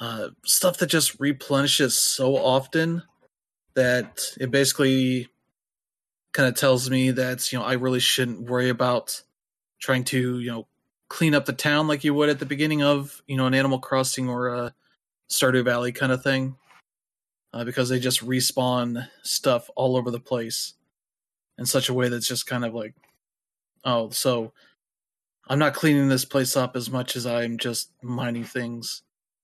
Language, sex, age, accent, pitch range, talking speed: English, male, 20-39, American, 120-135 Hz, 165 wpm